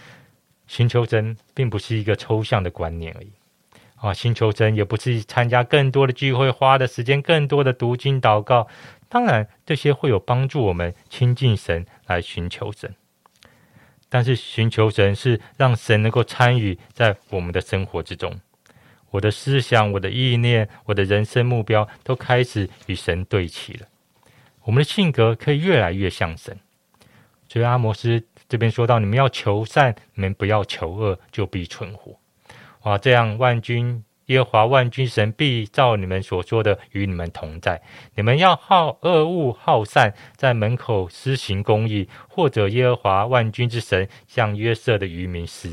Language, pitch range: Chinese, 105-130 Hz